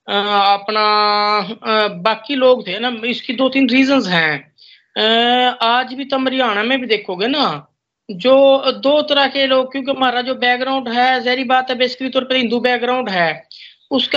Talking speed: 130 wpm